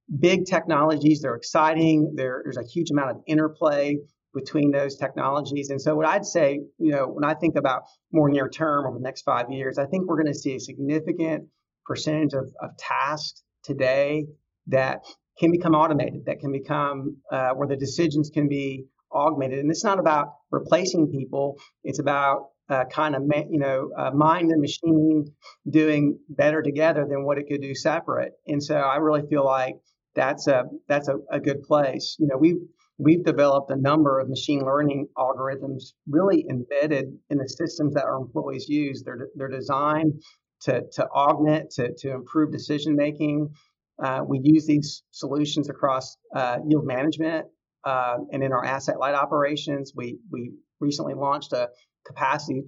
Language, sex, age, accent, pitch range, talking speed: English, male, 40-59, American, 135-155 Hz, 170 wpm